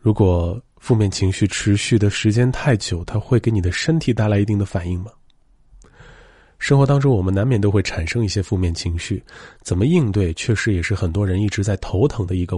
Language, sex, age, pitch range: Chinese, male, 20-39, 95-115 Hz